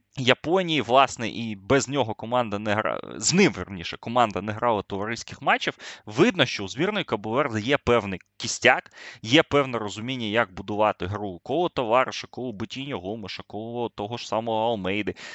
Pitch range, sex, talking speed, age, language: 100-135 Hz, male, 155 wpm, 20-39, Ukrainian